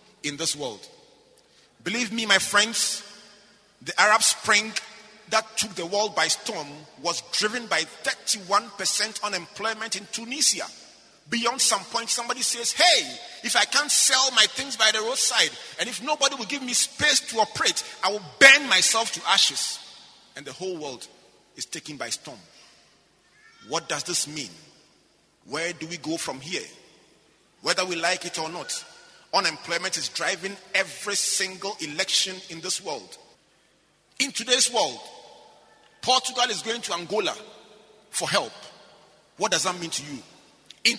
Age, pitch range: 30-49, 180-235 Hz